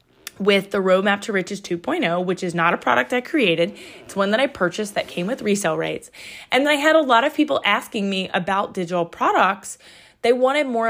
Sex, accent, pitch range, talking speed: female, American, 185-240 Hz, 210 wpm